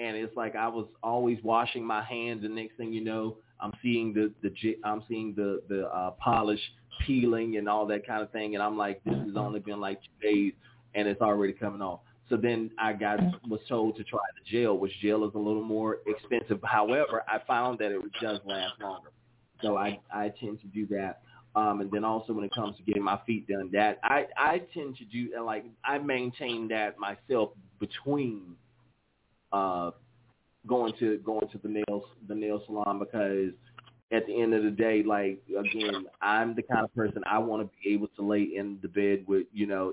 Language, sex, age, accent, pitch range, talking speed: English, male, 30-49, American, 105-115 Hz, 205 wpm